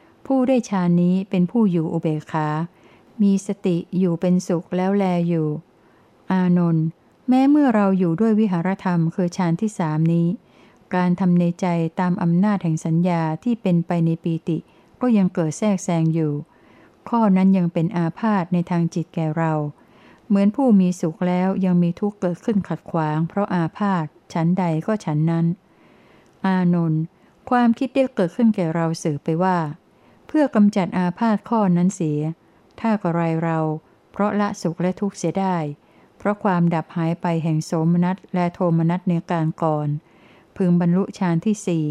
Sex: female